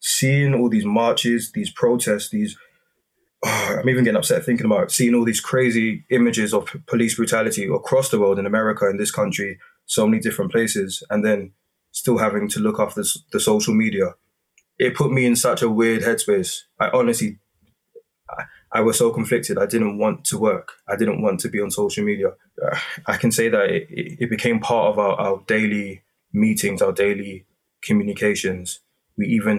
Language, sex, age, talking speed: English, male, 20-39, 185 wpm